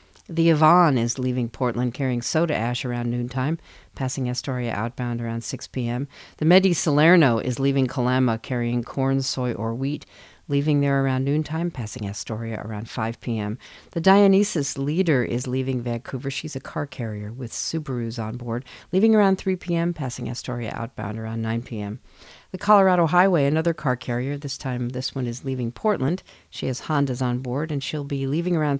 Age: 50-69